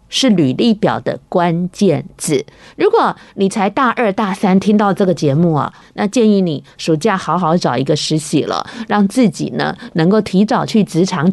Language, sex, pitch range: Chinese, female, 180-245 Hz